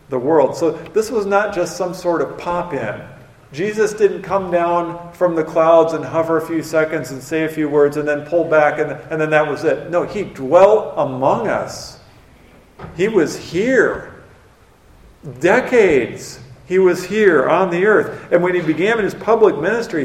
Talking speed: 180 wpm